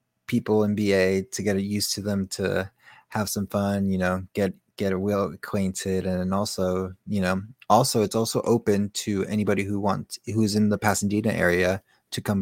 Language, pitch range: English, 95-110 Hz